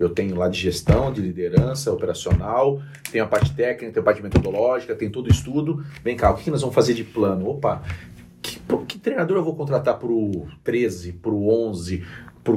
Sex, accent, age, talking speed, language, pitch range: male, Brazilian, 40-59, 205 wpm, Portuguese, 105-155 Hz